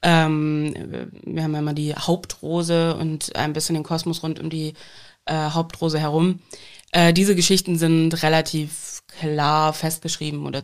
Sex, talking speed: female, 145 wpm